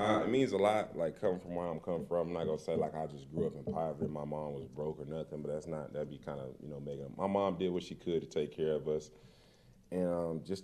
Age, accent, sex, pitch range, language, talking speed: 20-39, American, male, 80-95 Hz, English, 315 wpm